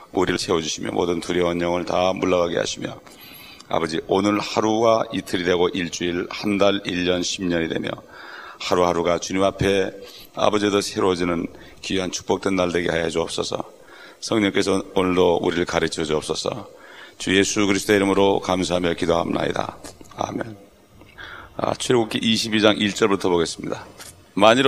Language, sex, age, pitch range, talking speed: English, male, 40-59, 95-110 Hz, 110 wpm